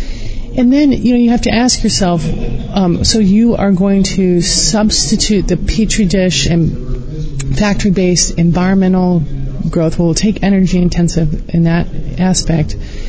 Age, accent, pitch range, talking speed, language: 30-49, American, 155-195 Hz, 140 wpm, English